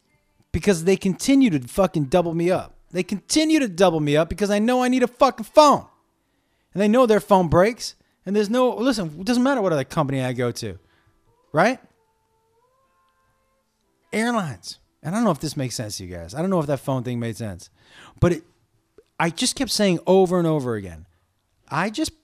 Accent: American